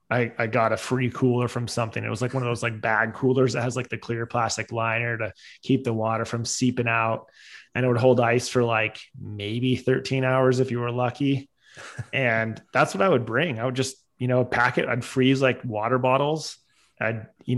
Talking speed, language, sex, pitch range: 220 wpm, English, male, 115-130 Hz